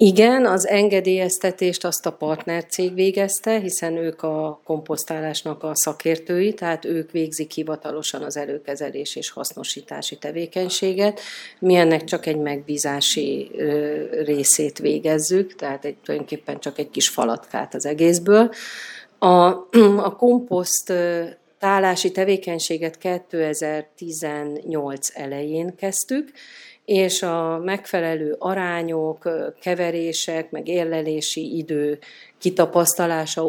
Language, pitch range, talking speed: Hungarian, 150-180 Hz, 95 wpm